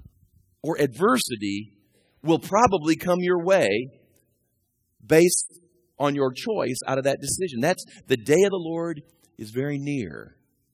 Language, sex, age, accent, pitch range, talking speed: English, male, 40-59, American, 115-165 Hz, 135 wpm